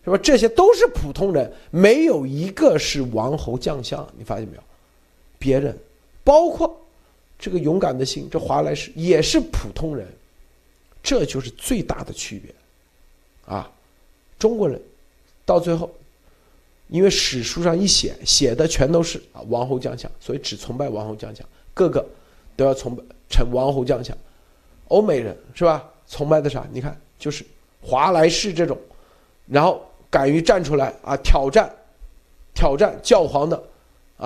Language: Chinese